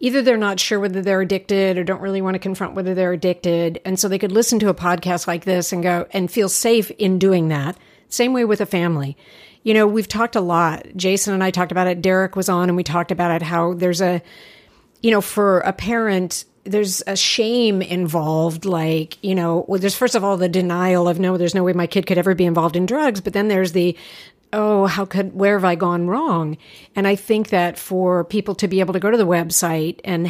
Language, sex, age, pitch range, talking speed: English, female, 50-69, 175-205 Hz, 240 wpm